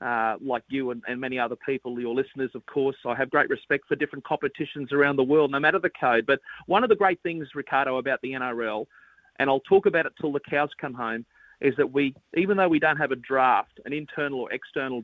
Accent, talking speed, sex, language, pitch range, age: Australian, 240 wpm, male, English, 135-165 Hz, 40-59